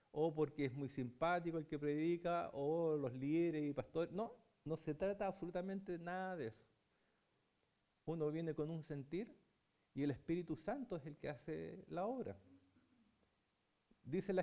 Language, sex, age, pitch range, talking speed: Spanish, male, 40-59, 135-180 Hz, 160 wpm